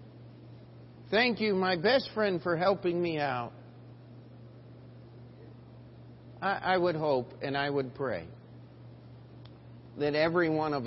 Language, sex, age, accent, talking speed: English, male, 50-69, American, 110 wpm